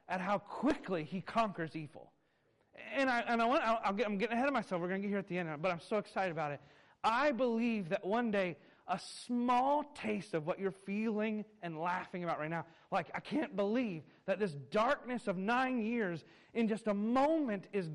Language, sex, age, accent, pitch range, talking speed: English, male, 30-49, American, 190-255 Hz, 215 wpm